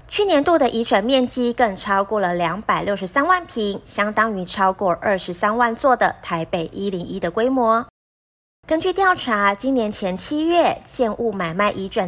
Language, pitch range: Chinese, 195-280 Hz